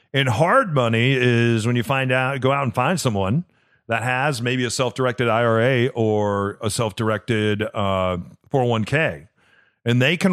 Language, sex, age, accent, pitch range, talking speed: English, male, 40-59, American, 115-140 Hz, 170 wpm